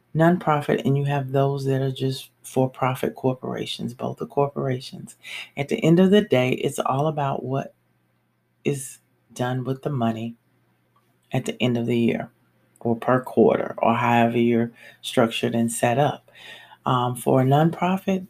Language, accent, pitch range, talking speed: English, American, 120-140 Hz, 155 wpm